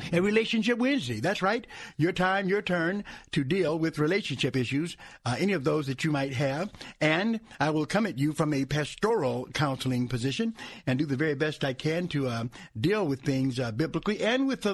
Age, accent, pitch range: 60-79, American, 140-185 Hz